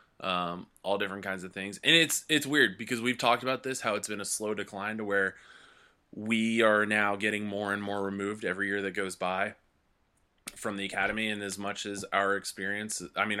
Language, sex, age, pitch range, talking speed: English, male, 20-39, 95-110 Hz, 210 wpm